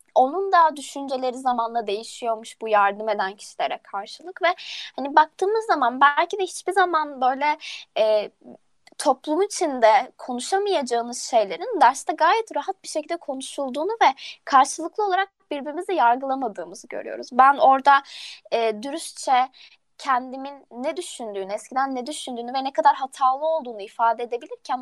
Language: Turkish